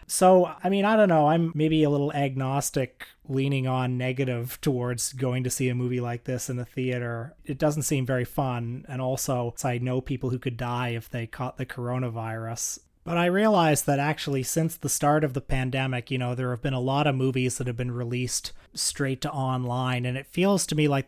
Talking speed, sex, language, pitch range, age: 220 wpm, male, English, 130-150 Hz, 30-49